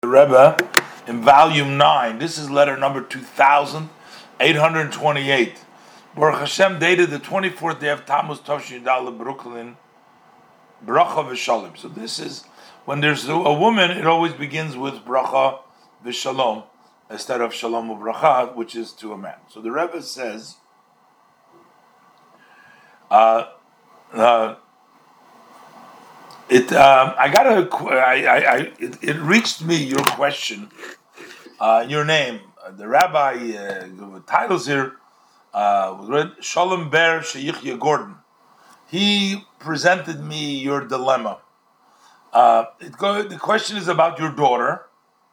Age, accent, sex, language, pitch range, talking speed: 50-69, American, male, English, 125-165 Hz, 130 wpm